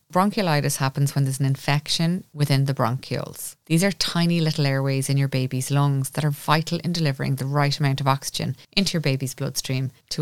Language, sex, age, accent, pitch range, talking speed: English, female, 20-39, Irish, 135-160 Hz, 195 wpm